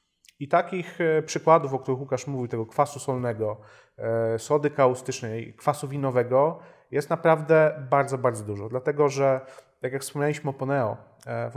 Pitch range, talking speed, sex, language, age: 120-150 Hz, 140 wpm, male, Polish, 30-49